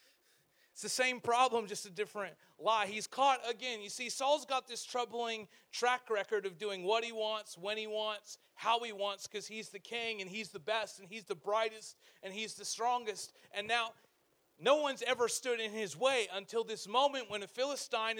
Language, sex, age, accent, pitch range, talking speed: English, male, 30-49, American, 205-250 Hz, 200 wpm